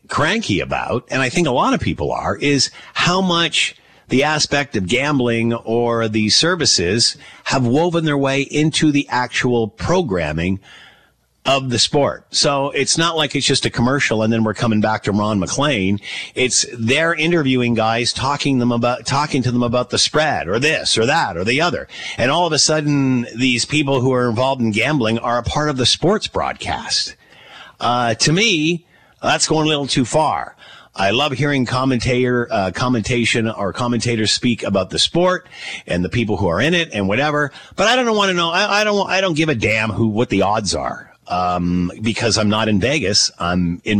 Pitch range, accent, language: 110-150 Hz, American, English